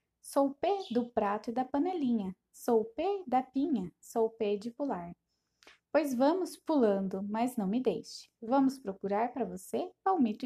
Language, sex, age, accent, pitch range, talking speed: Portuguese, female, 10-29, Brazilian, 210-275 Hz, 170 wpm